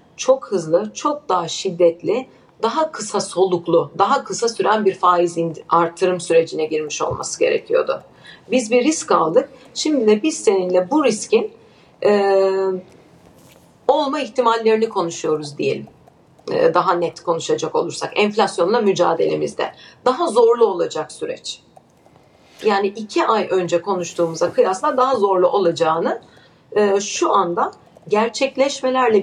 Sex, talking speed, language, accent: female, 115 wpm, Turkish, native